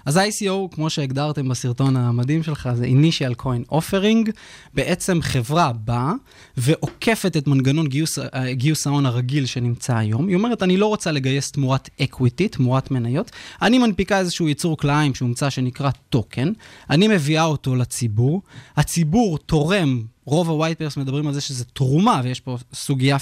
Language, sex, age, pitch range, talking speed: Hebrew, male, 20-39, 130-175 Hz, 150 wpm